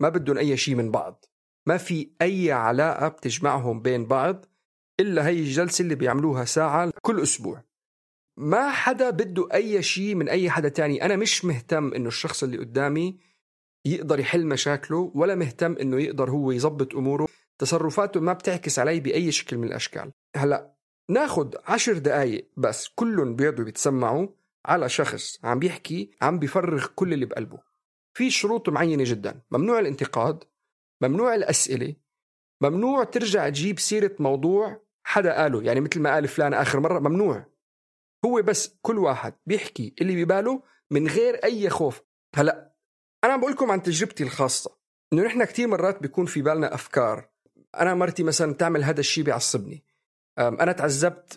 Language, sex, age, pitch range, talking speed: Arabic, male, 50-69, 140-190 Hz, 150 wpm